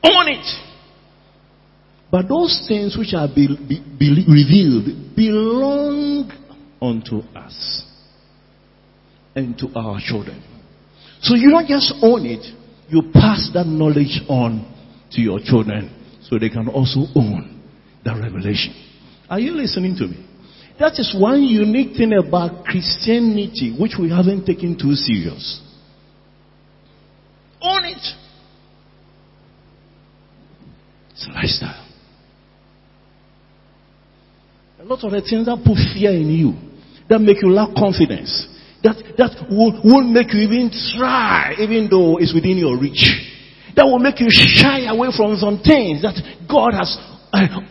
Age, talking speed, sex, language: 50-69, 125 wpm, male, English